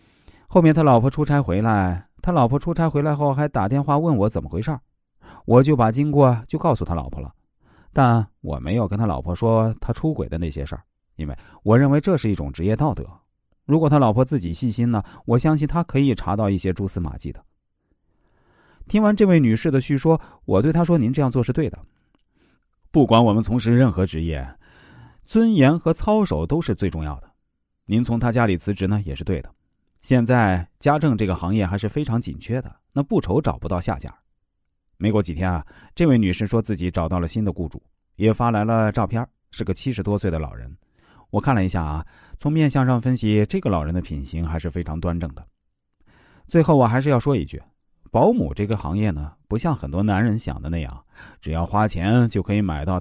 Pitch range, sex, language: 90-135 Hz, male, Chinese